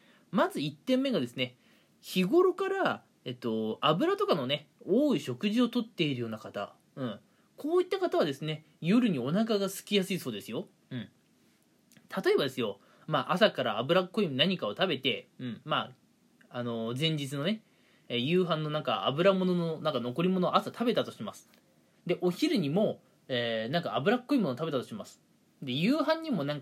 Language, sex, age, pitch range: Japanese, male, 20-39, 135-215 Hz